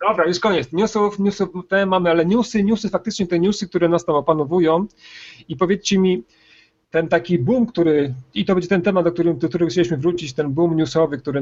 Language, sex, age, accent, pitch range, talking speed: Polish, male, 40-59, native, 135-165 Hz, 200 wpm